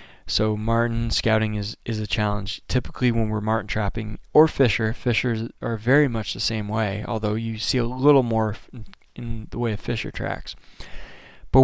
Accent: American